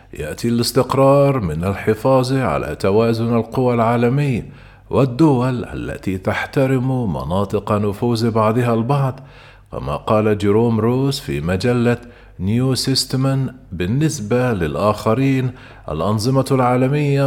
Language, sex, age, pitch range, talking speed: Arabic, male, 40-59, 105-130 Hz, 95 wpm